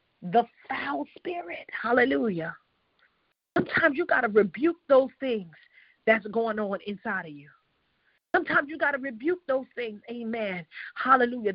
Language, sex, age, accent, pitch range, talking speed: English, female, 40-59, American, 230-305 Hz, 135 wpm